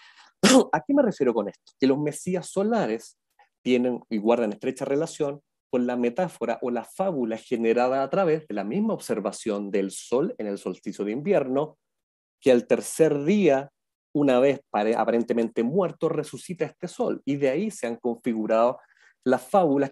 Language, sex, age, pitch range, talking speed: Spanish, male, 40-59, 115-160 Hz, 165 wpm